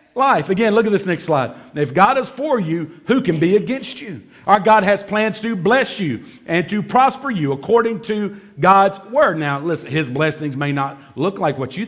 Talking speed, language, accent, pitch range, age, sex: 215 wpm, English, American, 145-230 Hz, 50-69, male